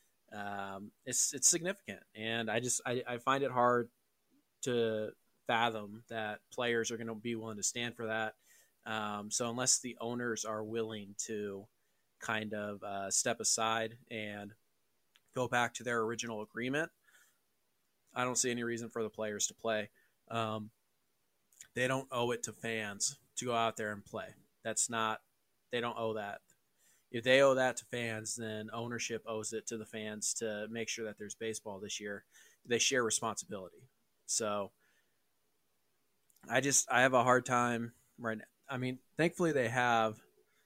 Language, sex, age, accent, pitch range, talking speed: English, male, 20-39, American, 110-120 Hz, 165 wpm